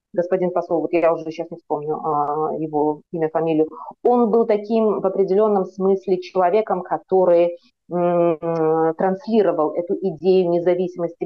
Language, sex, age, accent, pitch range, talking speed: Russian, female, 30-49, native, 170-220 Hz, 125 wpm